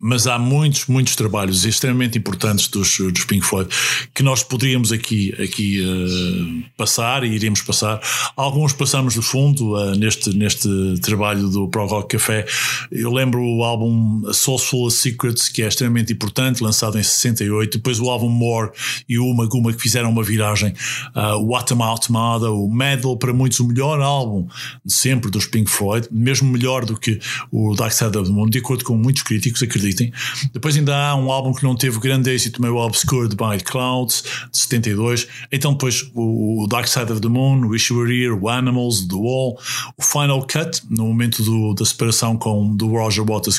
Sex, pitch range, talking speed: male, 110-130 Hz, 190 wpm